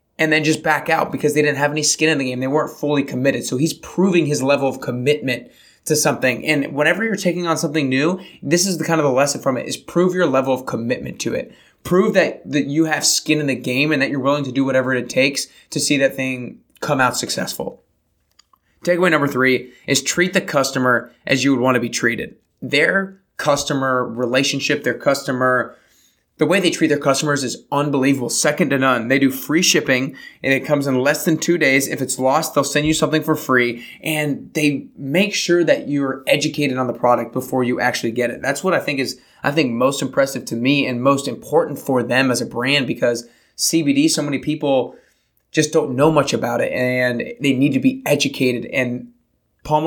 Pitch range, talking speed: 130-155 Hz, 215 wpm